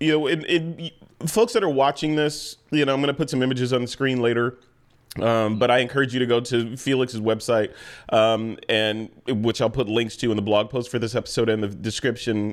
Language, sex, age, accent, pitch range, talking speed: English, male, 30-49, American, 120-150 Hz, 230 wpm